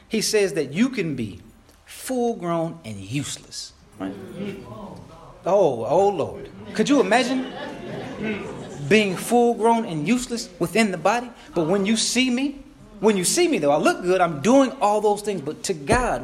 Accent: American